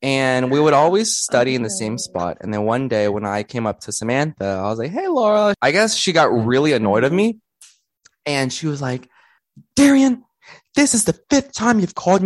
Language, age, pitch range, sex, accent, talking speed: English, 20-39, 120-185 Hz, male, American, 215 wpm